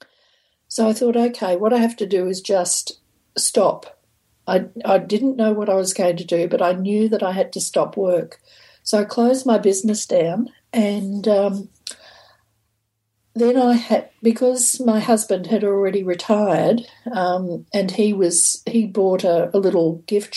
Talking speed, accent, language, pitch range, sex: 170 wpm, Australian, English, 185-225 Hz, female